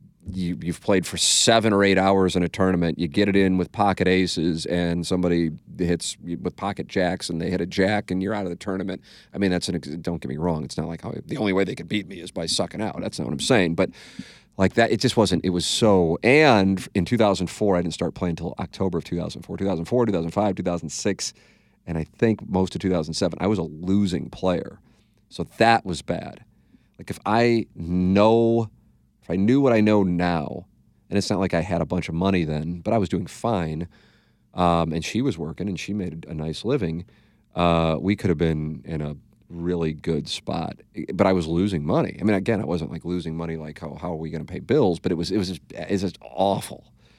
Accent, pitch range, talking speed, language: American, 85-100 Hz, 230 wpm, English